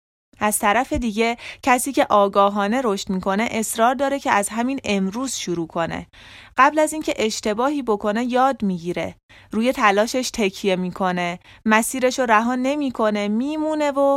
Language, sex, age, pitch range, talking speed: Persian, female, 20-39, 185-255 Hz, 135 wpm